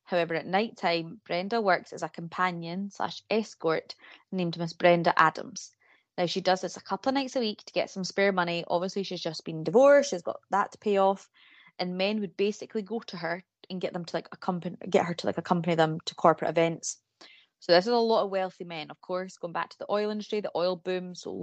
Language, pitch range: English, 175-215 Hz